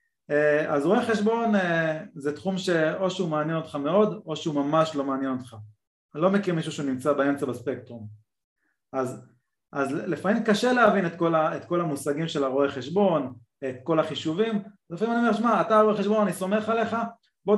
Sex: male